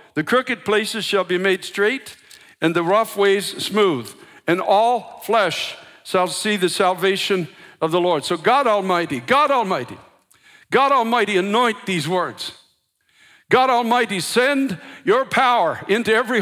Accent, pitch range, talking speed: American, 220-310 Hz, 145 wpm